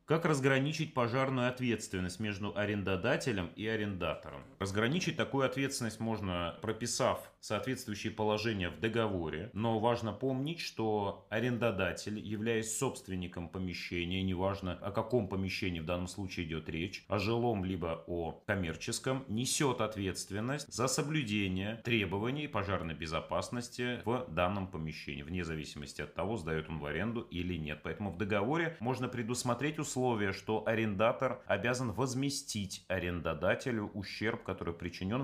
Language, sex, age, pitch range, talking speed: Russian, male, 30-49, 90-120 Hz, 125 wpm